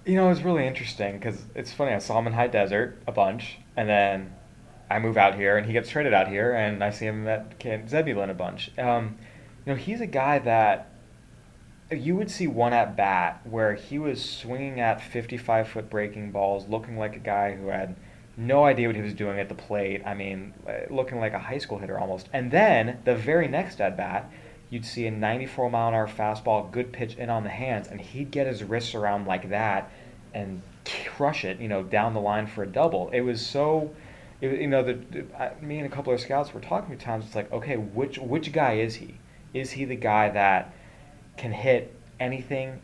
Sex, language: male, English